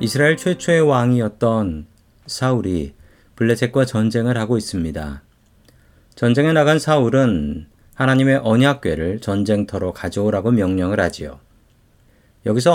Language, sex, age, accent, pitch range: Korean, male, 40-59, native, 100-140 Hz